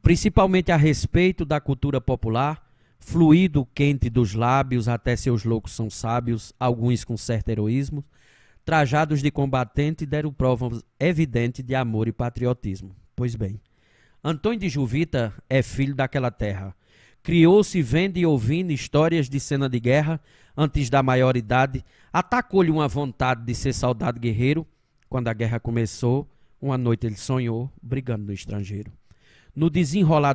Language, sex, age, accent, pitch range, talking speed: Portuguese, male, 20-39, Brazilian, 115-150 Hz, 140 wpm